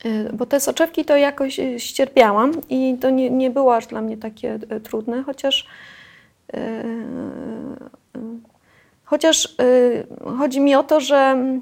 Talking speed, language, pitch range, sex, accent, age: 130 wpm, Polish, 245-280 Hz, female, native, 30-49